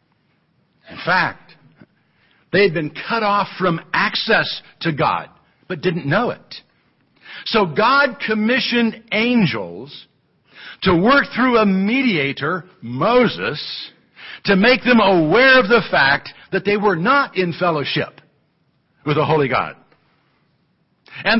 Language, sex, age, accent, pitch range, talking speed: English, male, 60-79, American, 155-225 Hz, 120 wpm